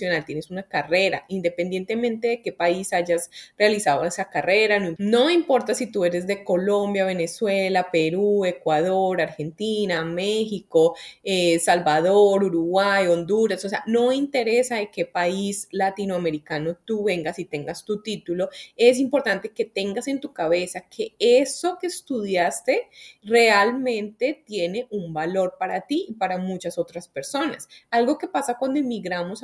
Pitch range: 175-235 Hz